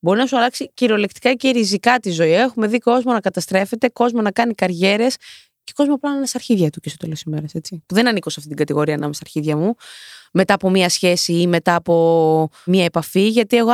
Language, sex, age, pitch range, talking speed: Greek, female, 20-39, 175-245 Hz, 225 wpm